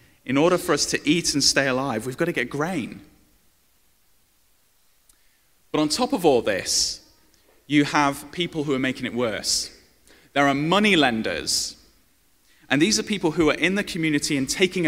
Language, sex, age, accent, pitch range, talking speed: English, male, 30-49, British, 130-175 Hz, 175 wpm